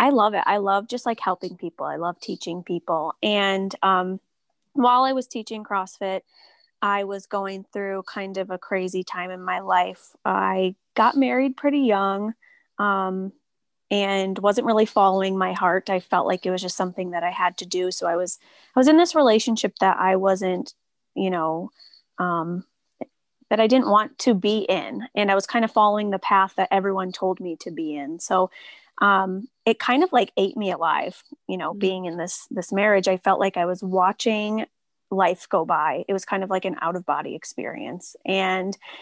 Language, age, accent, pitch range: English, 20-39, American, 185-215 Hz